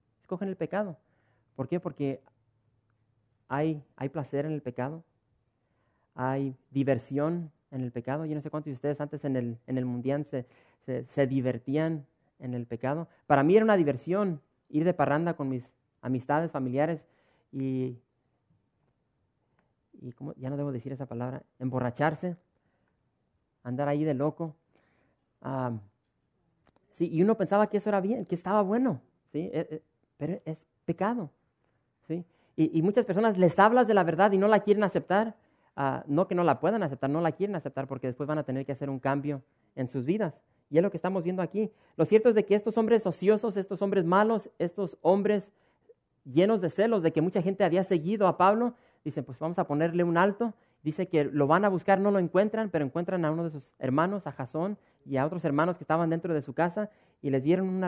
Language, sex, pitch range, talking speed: English, male, 135-190 Hz, 190 wpm